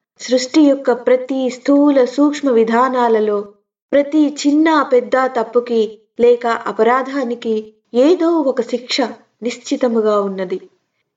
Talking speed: 90 wpm